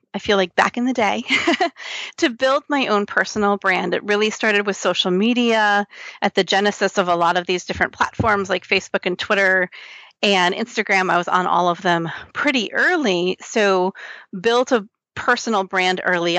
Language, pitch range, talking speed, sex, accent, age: English, 195-245 Hz, 180 wpm, female, American, 30-49